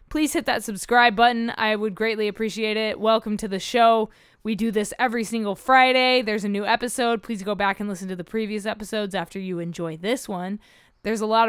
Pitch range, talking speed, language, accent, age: 205-235 Hz, 215 wpm, English, American, 20-39